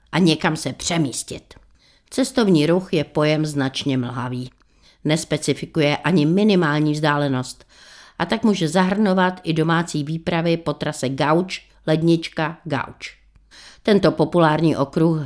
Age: 50-69